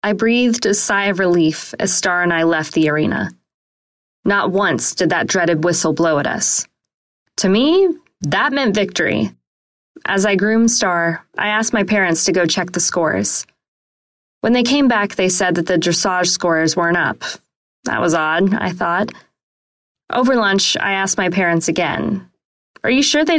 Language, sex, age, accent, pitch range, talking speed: English, female, 20-39, American, 165-215 Hz, 175 wpm